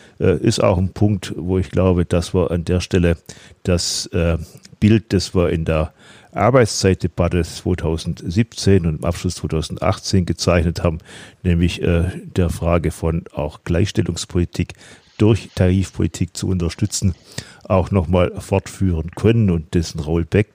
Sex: male